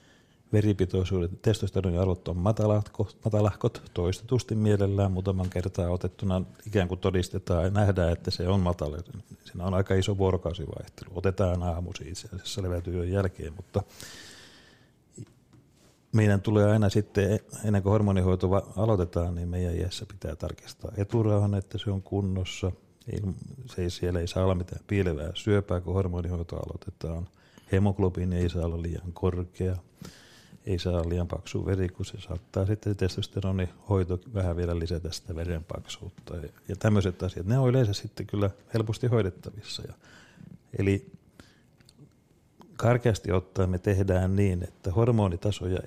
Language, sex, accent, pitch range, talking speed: Finnish, male, native, 90-105 Hz, 135 wpm